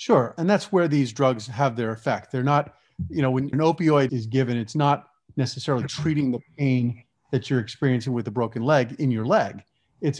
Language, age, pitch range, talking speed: English, 30-49, 120-145 Hz, 205 wpm